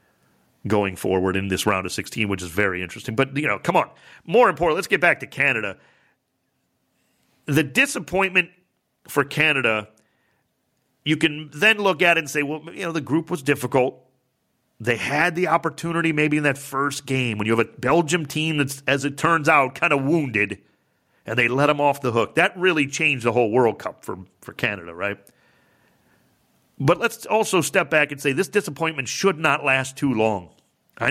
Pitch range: 120-160 Hz